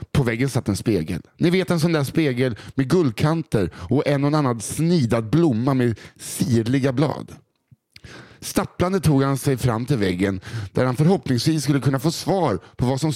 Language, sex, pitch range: Swedish, male, 115-155 Hz